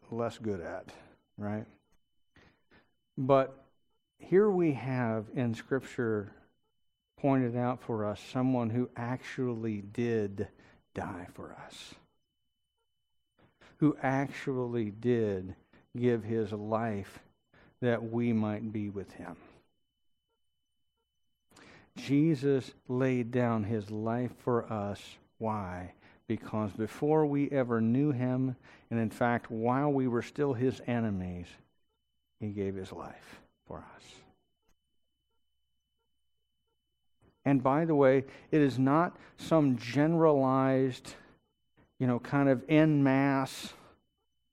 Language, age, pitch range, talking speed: English, 50-69, 110-135 Hz, 105 wpm